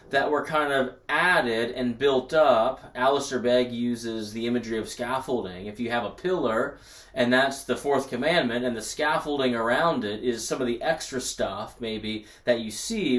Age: 30-49